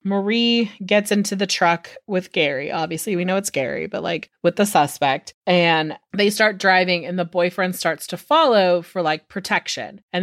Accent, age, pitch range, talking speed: American, 30-49, 170-210 Hz, 180 wpm